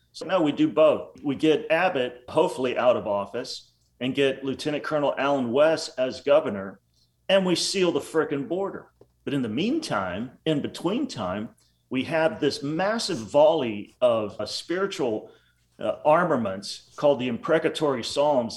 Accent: American